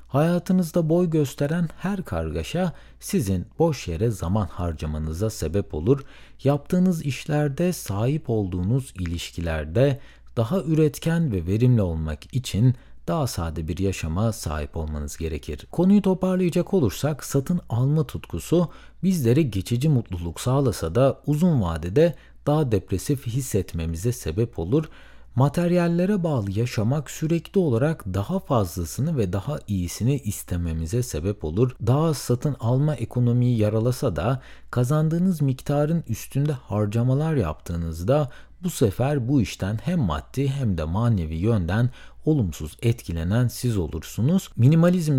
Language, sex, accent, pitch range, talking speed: Turkish, male, native, 95-150 Hz, 115 wpm